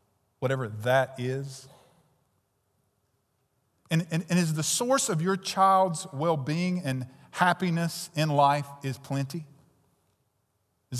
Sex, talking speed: male, 110 wpm